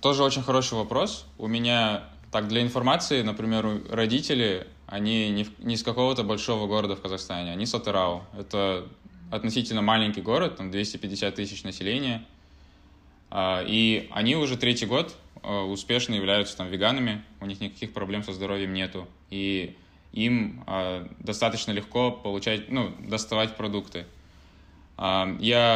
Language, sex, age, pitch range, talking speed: Russian, male, 20-39, 95-115 Hz, 135 wpm